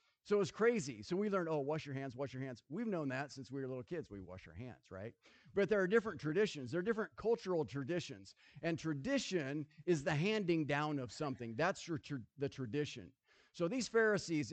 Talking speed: 210 wpm